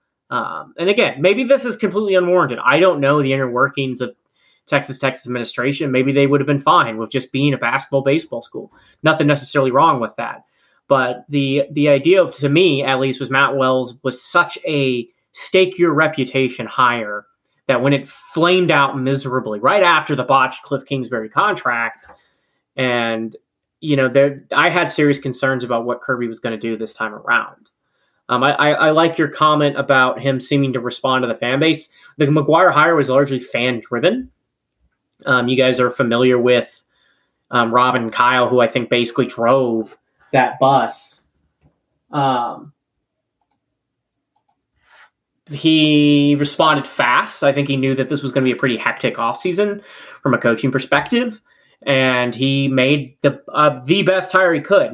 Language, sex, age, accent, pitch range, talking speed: English, male, 30-49, American, 125-150 Hz, 170 wpm